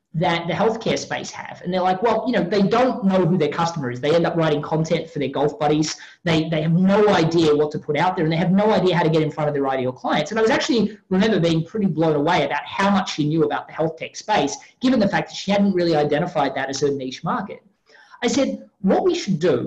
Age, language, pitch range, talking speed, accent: 20-39, English, 155-205 Hz, 270 wpm, Australian